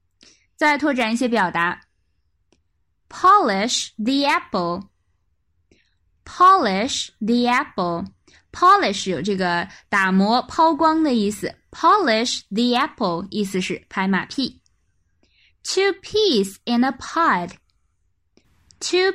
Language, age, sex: Chinese, 10-29, female